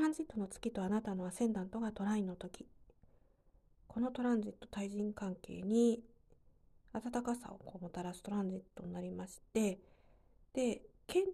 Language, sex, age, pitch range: Japanese, female, 40-59, 200-255 Hz